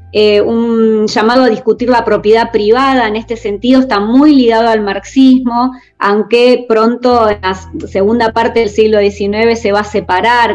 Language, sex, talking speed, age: Spanish, female, 165 wpm, 20-39